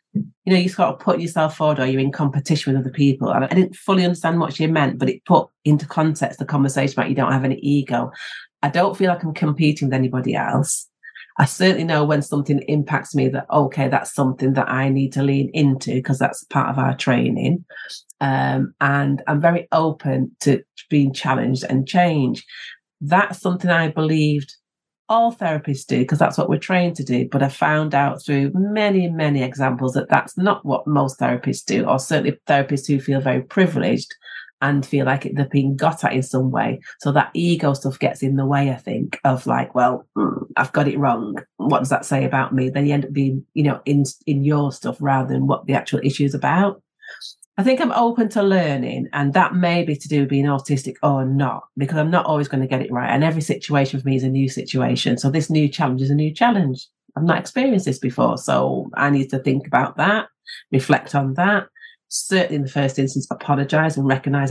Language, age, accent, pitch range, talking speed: English, 40-59, British, 135-160 Hz, 220 wpm